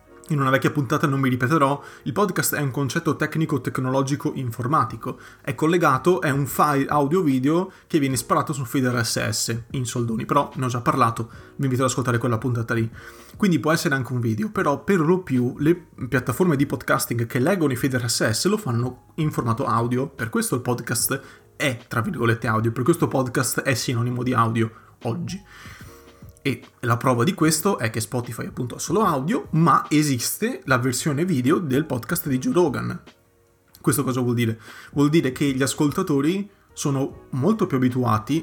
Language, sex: Italian, male